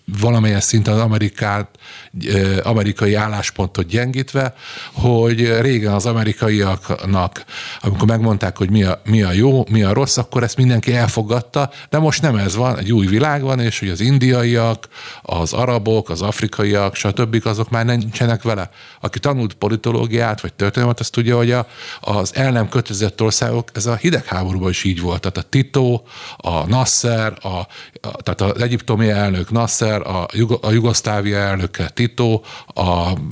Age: 50-69